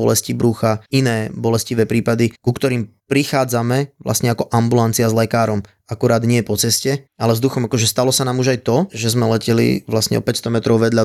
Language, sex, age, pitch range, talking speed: Slovak, male, 20-39, 110-130 Hz, 190 wpm